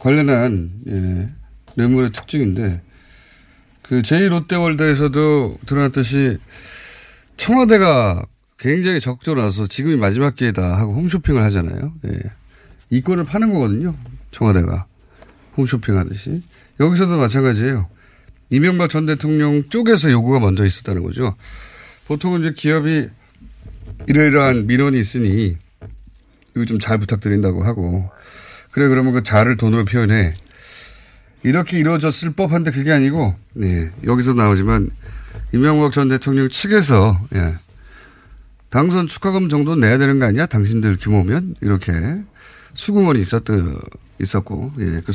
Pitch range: 100-150 Hz